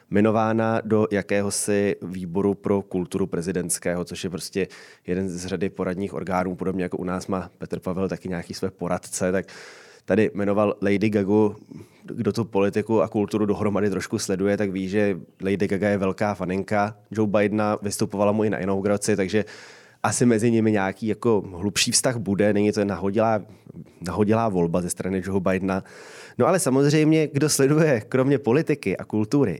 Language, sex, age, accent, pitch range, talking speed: Czech, male, 20-39, native, 95-115 Hz, 165 wpm